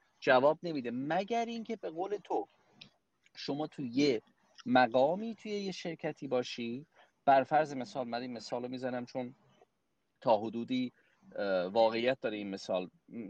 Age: 40-59